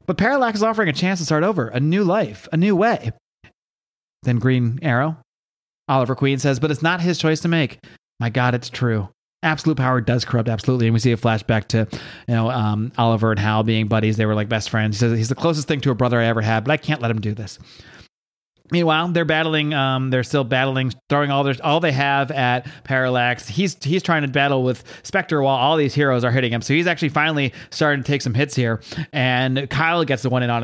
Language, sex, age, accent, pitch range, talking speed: English, male, 30-49, American, 120-160 Hz, 235 wpm